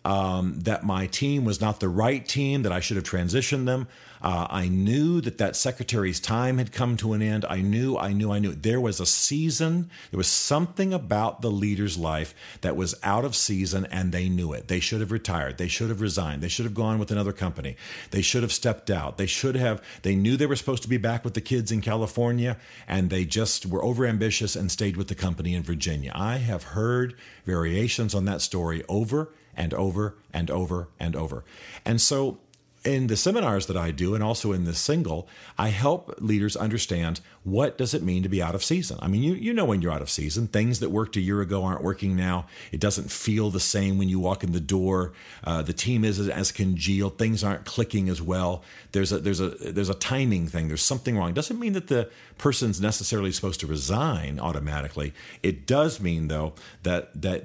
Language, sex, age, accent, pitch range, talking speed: English, male, 50-69, American, 90-115 Hz, 220 wpm